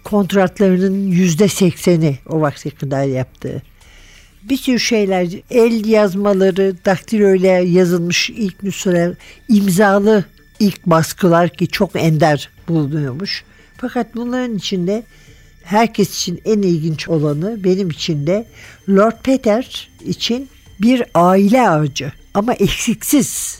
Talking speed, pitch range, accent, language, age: 110 wpm, 170-225 Hz, native, Turkish, 60-79